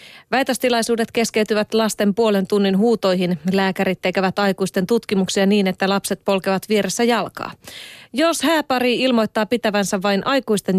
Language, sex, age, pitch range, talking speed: Finnish, female, 30-49, 175-230 Hz, 120 wpm